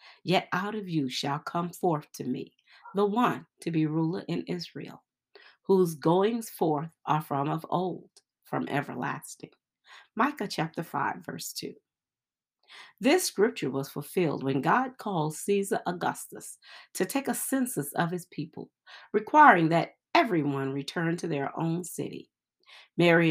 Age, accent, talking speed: 40-59, American, 140 wpm